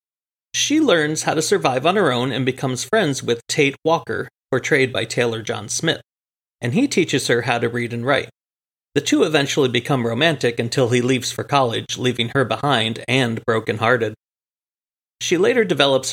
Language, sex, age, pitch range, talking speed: English, male, 40-59, 120-155 Hz, 170 wpm